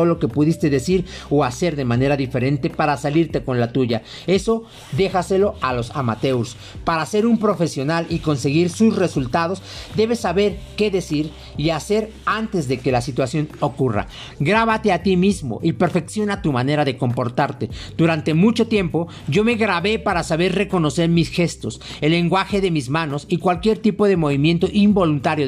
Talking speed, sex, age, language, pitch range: 165 wpm, male, 40-59, Spanish, 140-190 Hz